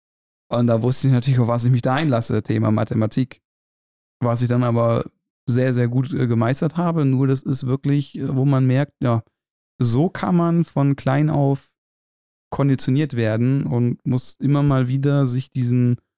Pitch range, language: 110-130 Hz, German